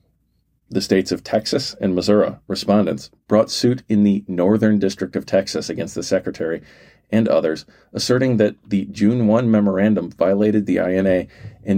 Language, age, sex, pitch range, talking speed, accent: English, 40-59, male, 90-110 Hz, 155 wpm, American